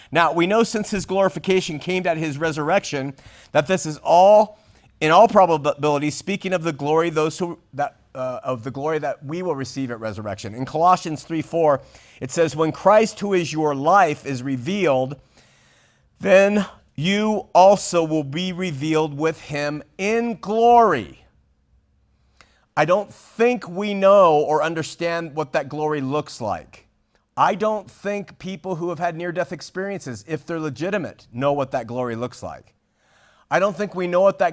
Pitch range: 145-190 Hz